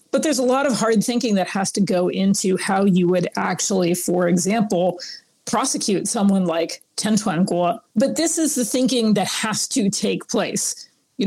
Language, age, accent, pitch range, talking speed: English, 40-59, American, 185-225 Hz, 185 wpm